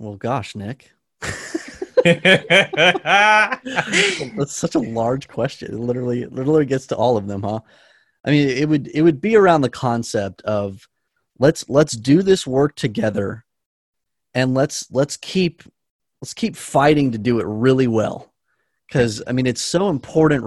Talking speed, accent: 155 wpm, American